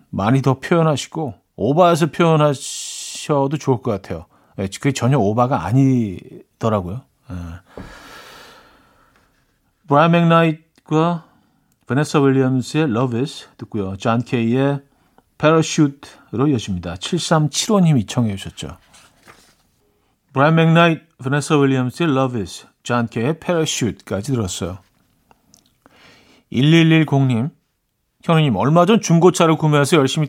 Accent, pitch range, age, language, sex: native, 120-170 Hz, 40-59, Korean, male